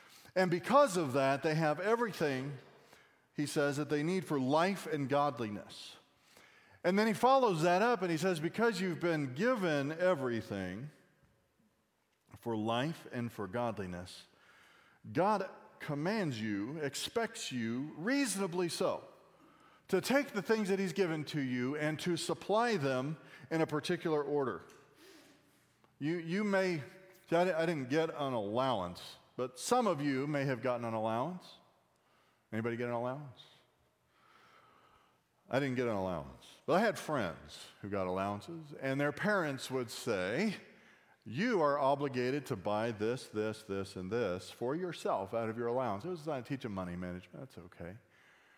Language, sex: English, male